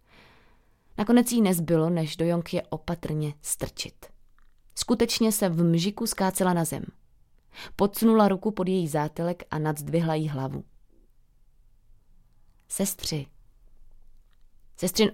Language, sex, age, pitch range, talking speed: Czech, female, 20-39, 150-195 Hz, 105 wpm